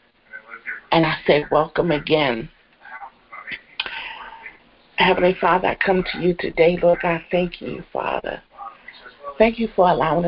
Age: 60-79